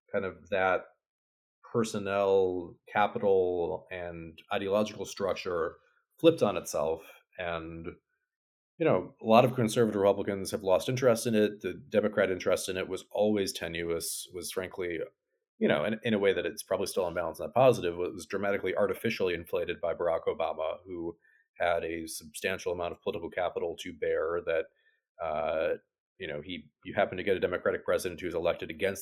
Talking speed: 165 wpm